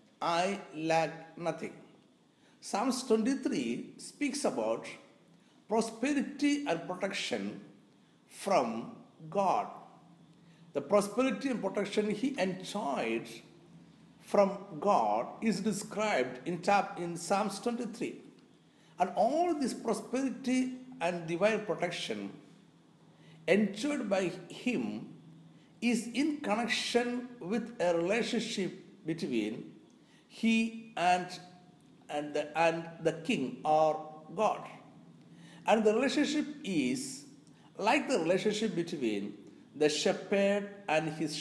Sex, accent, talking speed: male, native, 95 wpm